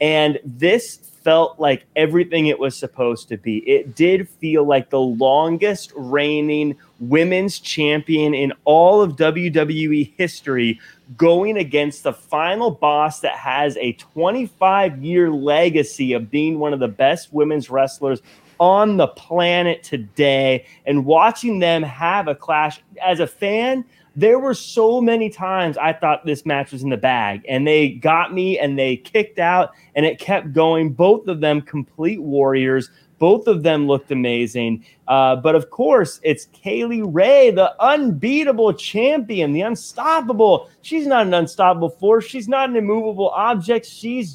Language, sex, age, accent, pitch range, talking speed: English, male, 30-49, American, 145-205 Hz, 155 wpm